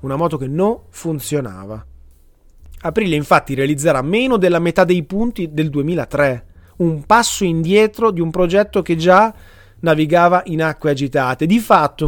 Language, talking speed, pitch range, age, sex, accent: Italian, 145 wpm, 130-180 Hz, 30-49, male, native